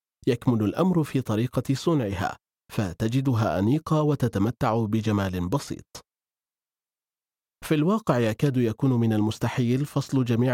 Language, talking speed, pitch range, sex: Arabic, 100 wpm, 110-140 Hz, male